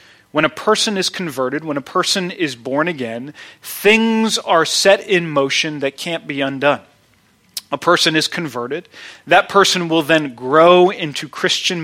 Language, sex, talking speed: English, male, 155 wpm